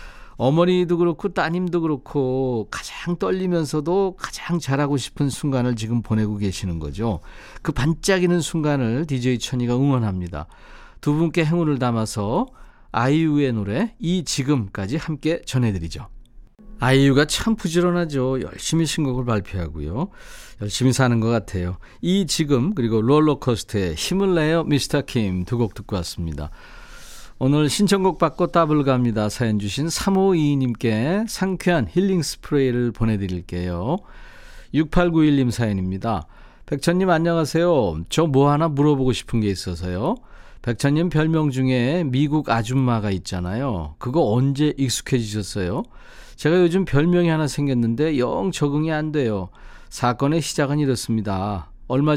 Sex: male